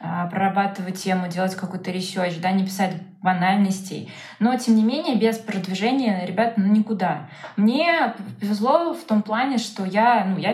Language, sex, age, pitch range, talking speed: Russian, female, 20-39, 185-220 Hz, 155 wpm